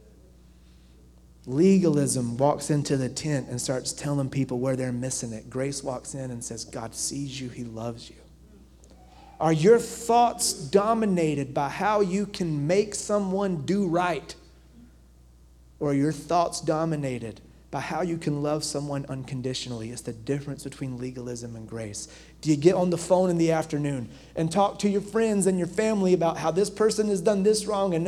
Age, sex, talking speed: 30-49, male, 175 wpm